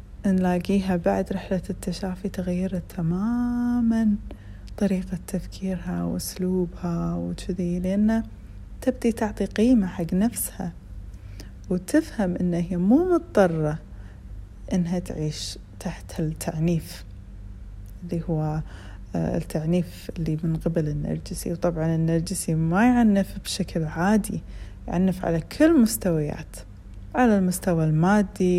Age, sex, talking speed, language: 30-49, female, 90 wpm, Arabic